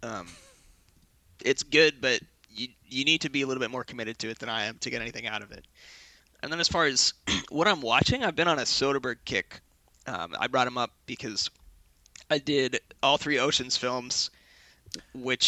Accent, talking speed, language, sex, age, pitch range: American, 200 wpm, English, male, 20-39, 115-145 Hz